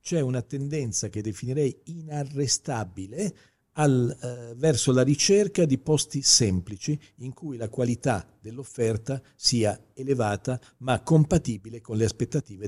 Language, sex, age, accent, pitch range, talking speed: Italian, male, 50-69, native, 105-135 Hz, 120 wpm